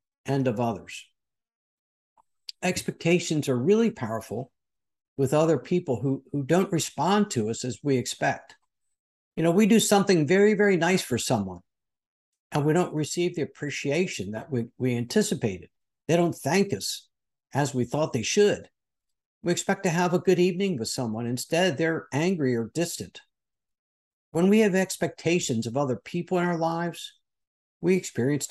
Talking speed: 155 wpm